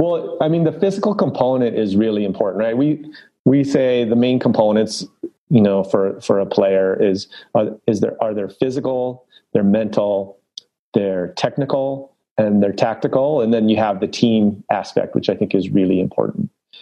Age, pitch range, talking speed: 30-49, 100-125 Hz, 175 wpm